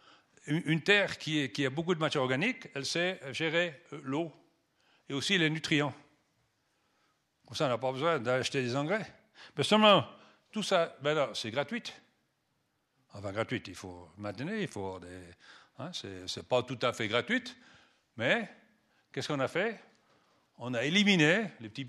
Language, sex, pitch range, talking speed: French, male, 120-165 Hz, 170 wpm